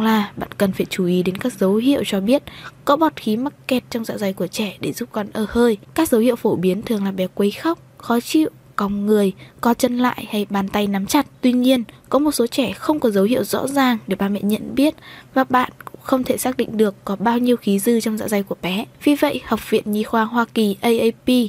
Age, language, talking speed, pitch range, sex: 20-39, Vietnamese, 255 wpm, 210-265 Hz, female